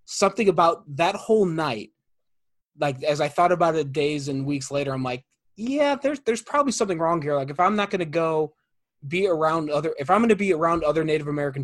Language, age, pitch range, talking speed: English, 20-39, 140-165 Hz, 225 wpm